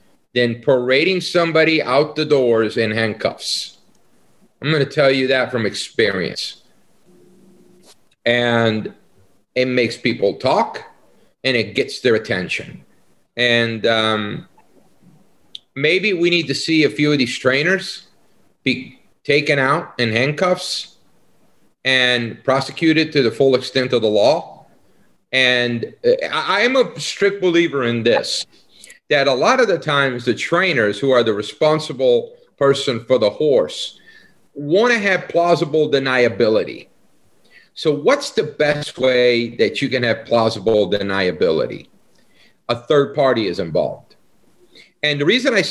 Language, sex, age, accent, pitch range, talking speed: English, male, 40-59, American, 120-180 Hz, 130 wpm